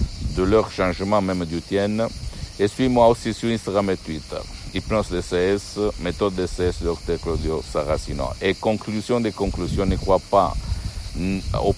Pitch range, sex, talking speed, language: 85-100 Hz, male, 155 wpm, Italian